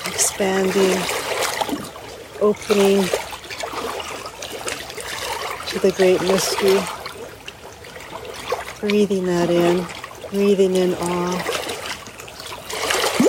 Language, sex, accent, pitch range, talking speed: English, female, American, 180-200 Hz, 55 wpm